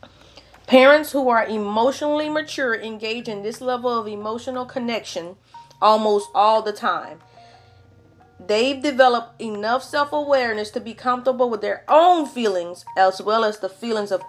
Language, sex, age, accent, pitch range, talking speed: English, female, 40-59, American, 205-280 Hz, 140 wpm